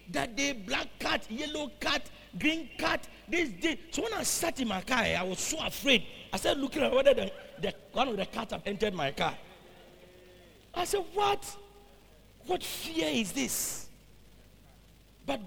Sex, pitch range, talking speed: male, 175-285 Hz, 165 wpm